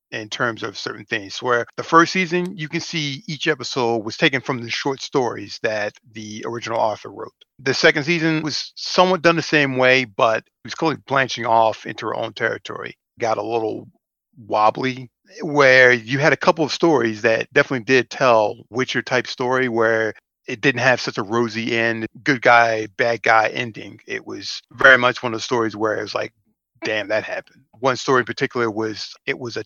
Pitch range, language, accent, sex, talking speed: 115-135 Hz, English, American, male, 200 wpm